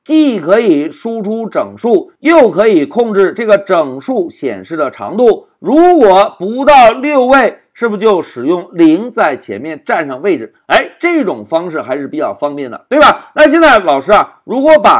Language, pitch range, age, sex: Chinese, 200-295 Hz, 50-69, male